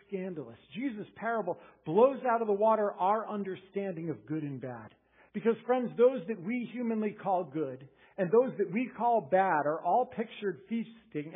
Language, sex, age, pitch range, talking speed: English, male, 50-69, 130-215 Hz, 170 wpm